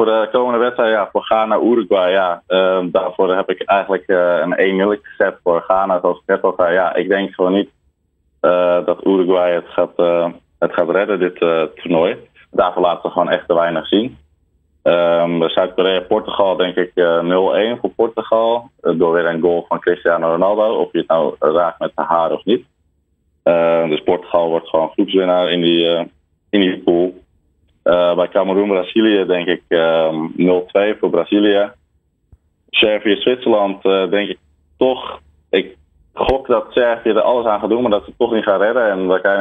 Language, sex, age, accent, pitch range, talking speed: Dutch, male, 20-39, Dutch, 80-95 Hz, 185 wpm